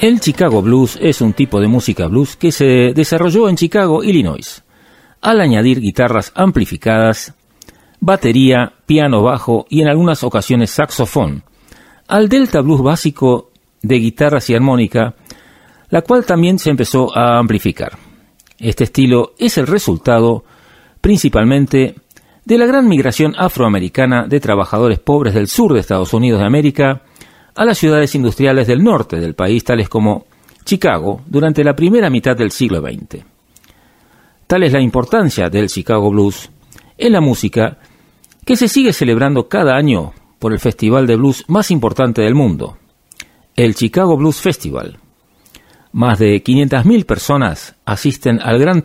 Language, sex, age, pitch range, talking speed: Spanish, male, 40-59, 115-155 Hz, 145 wpm